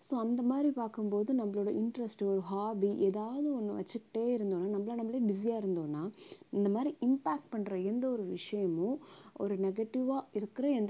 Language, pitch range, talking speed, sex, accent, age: Tamil, 190-230 Hz, 150 wpm, female, native, 20-39